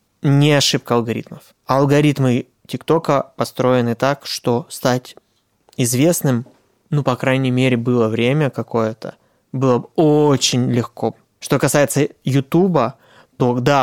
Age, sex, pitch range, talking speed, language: 20-39, male, 125-150 Hz, 115 wpm, Russian